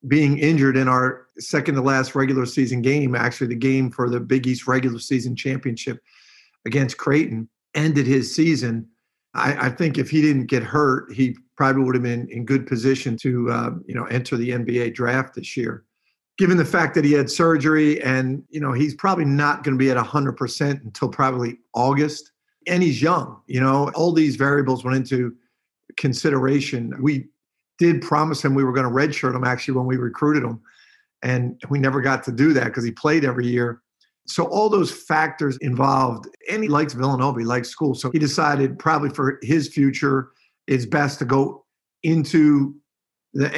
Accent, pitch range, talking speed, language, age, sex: American, 130-150 Hz, 185 wpm, English, 50-69, male